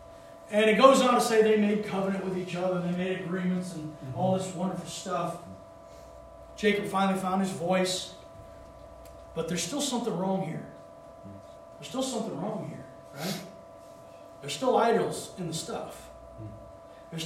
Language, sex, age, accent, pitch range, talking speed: English, male, 40-59, American, 145-195 Hz, 155 wpm